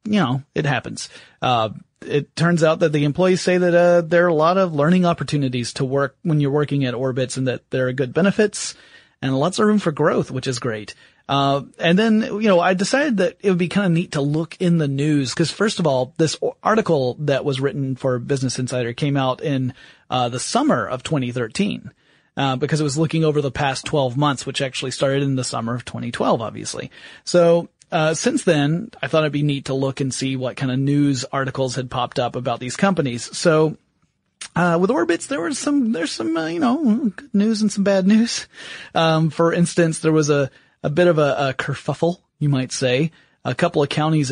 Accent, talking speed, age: American, 220 wpm, 30-49